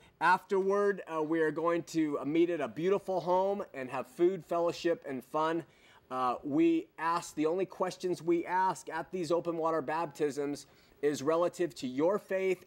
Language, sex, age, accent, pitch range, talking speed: English, male, 30-49, American, 135-170 Hz, 165 wpm